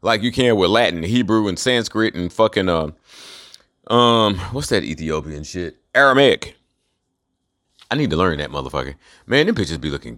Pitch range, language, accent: 80-130 Hz, English, American